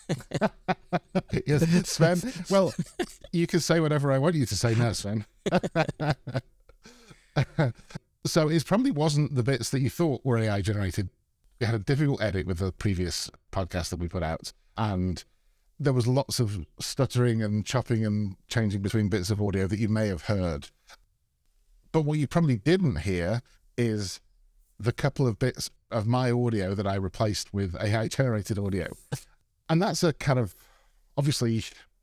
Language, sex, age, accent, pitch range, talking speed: English, male, 50-69, British, 100-135 Hz, 155 wpm